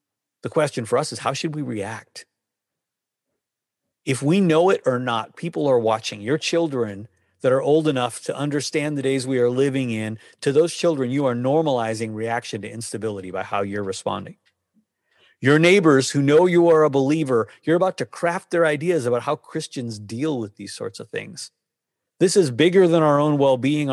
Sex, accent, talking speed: male, American, 190 wpm